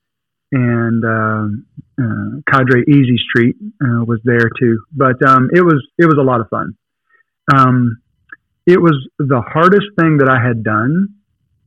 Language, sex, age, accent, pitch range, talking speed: English, male, 40-59, American, 115-145 Hz, 155 wpm